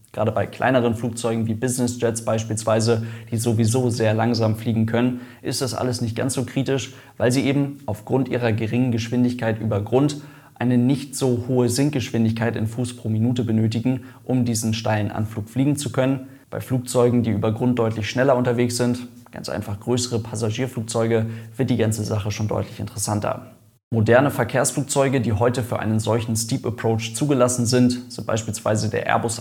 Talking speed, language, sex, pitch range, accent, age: 165 wpm, German, male, 110-125 Hz, German, 20-39